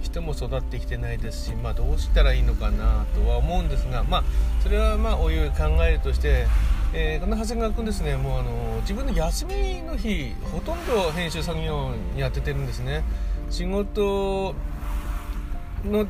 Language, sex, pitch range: Japanese, male, 65-75 Hz